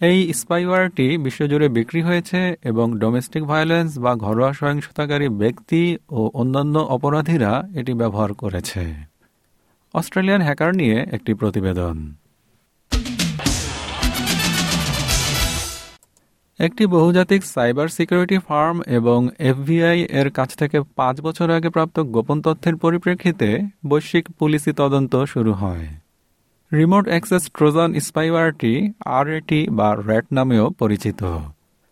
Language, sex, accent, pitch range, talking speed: Bengali, male, native, 115-165 Hz, 75 wpm